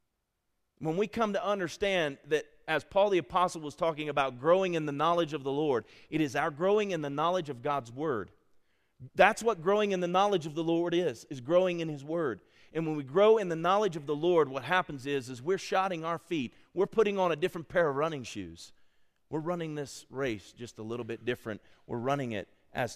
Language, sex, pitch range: English, male, 110-165 Hz